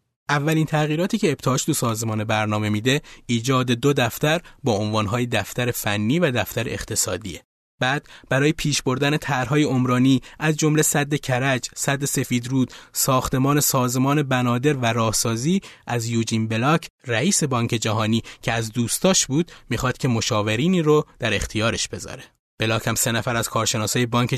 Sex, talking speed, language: male, 145 wpm, Persian